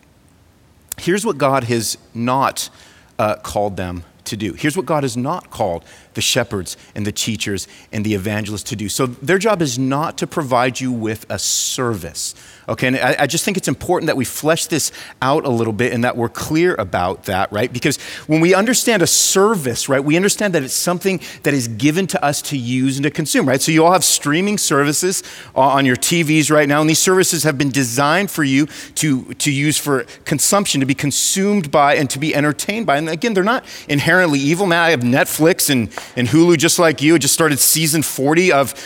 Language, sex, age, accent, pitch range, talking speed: English, male, 40-59, American, 130-170 Hz, 210 wpm